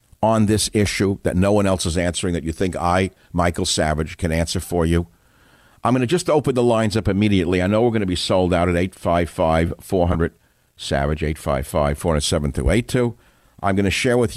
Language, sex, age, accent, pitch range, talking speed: English, male, 60-79, American, 85-110 Hz, 195 wpm